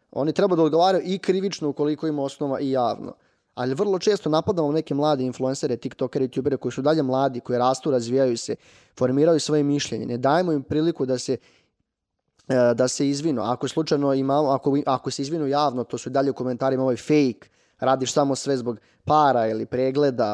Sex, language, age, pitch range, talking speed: male, Croatian, 20-39, 130-160 Hz, 175 wpm